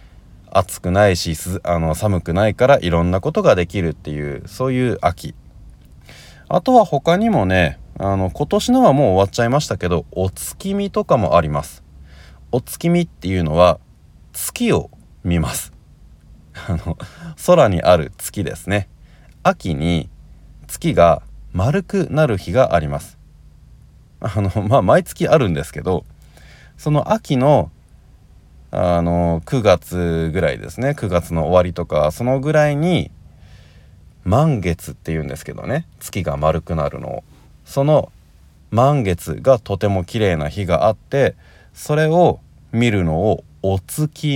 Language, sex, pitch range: Japanese, male, 80-120 Hz